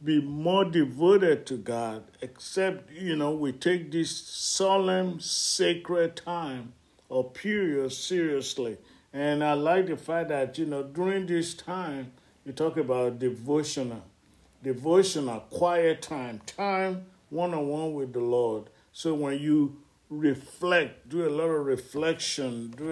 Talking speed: 130 wpm